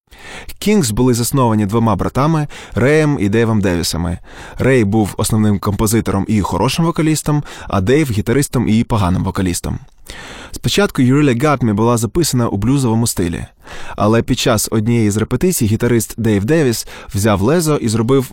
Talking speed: 150 wpm